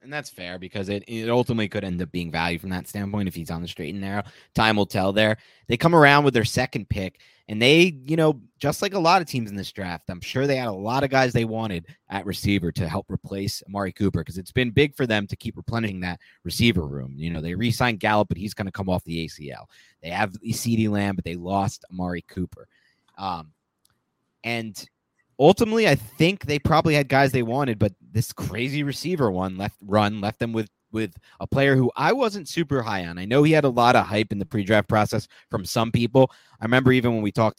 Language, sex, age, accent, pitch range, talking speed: English, male, 30-49, American, 95-130 Hz, 240 wpm